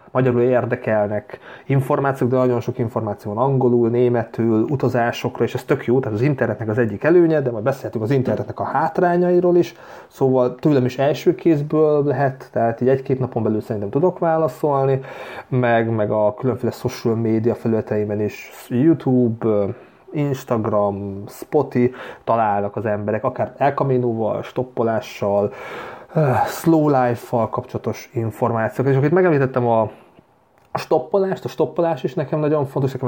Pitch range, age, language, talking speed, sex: 115-150 Hz, 30-49, Hungarian, 140 wpm, male